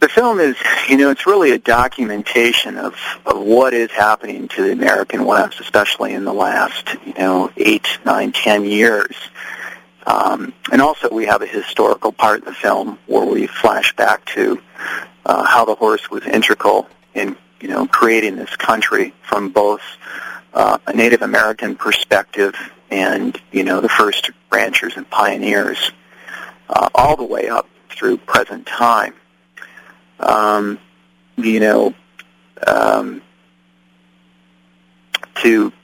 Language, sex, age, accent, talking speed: English, male, 40-59, American, 140 wpm